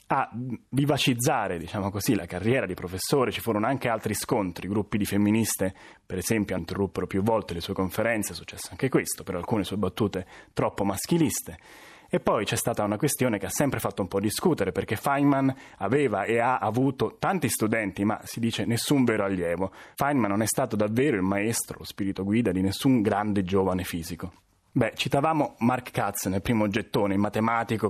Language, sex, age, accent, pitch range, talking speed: Italian, male, 30-49, native, 95-115 Hz, 185 wpm